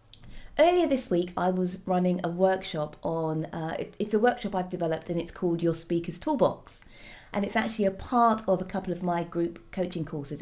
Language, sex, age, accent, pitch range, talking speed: English, female, 30-49, British, 170-215 Hz, 195 wpm